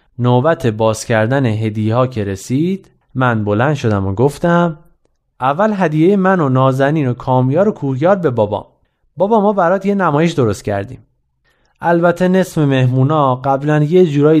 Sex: male